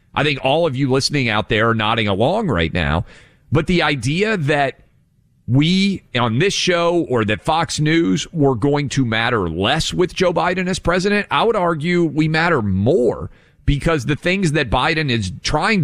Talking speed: 180 wpm